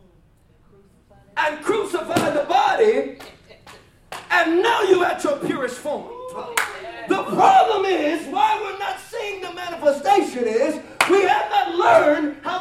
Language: English